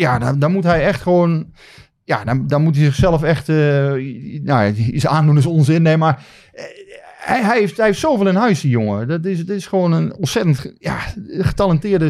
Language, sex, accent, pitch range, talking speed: Dutch, male, Dutch, 115-150 Hz, 210 wpm